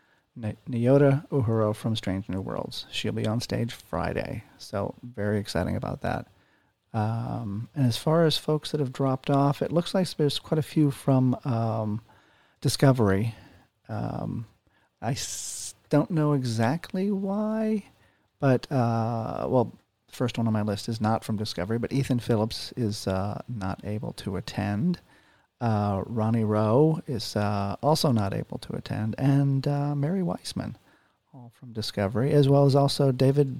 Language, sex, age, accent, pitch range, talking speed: English, male, 40-59, American, 110-140 Hz, 150 wpm